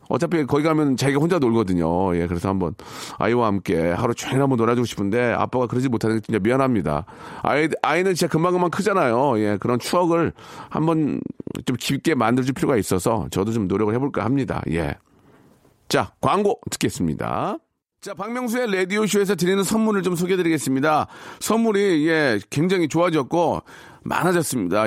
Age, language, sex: 40-59, Korean, male